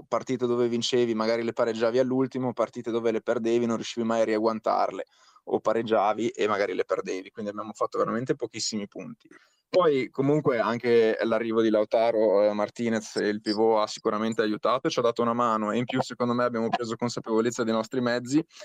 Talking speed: 185 wpm